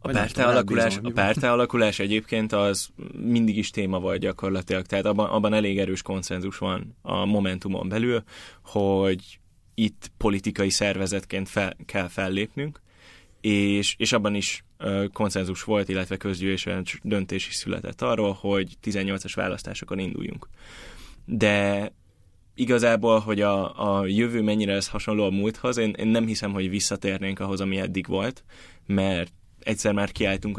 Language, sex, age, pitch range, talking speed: Hungarian, male, 10-29, 95-105 Hz, 130 wpm